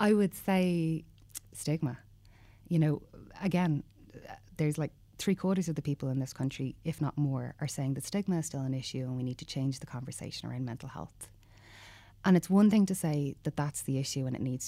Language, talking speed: English, 210 wpm